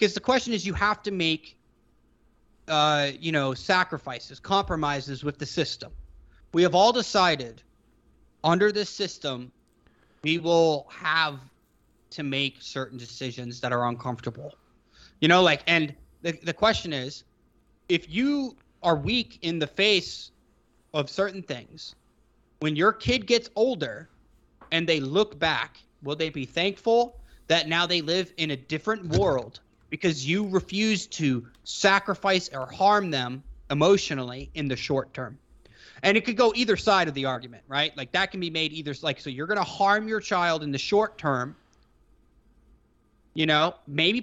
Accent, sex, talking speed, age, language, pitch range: American, male, 160 wpm, 30-49, English, 130-185 Hz